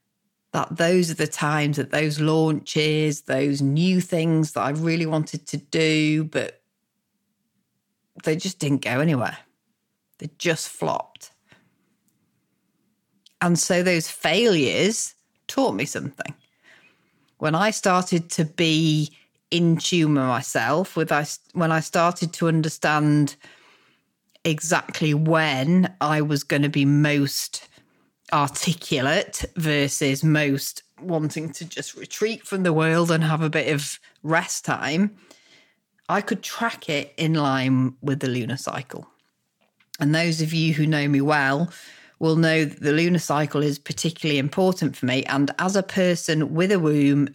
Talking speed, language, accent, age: 140 wpm, English, British, 40-59